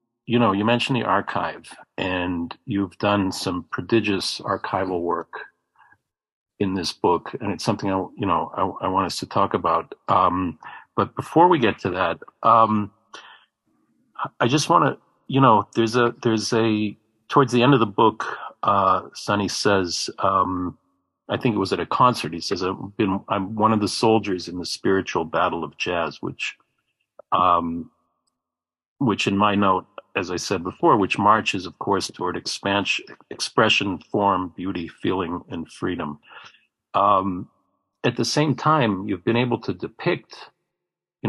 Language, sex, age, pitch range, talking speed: English, male, 40-59, 95-115 Hz, 165 wpm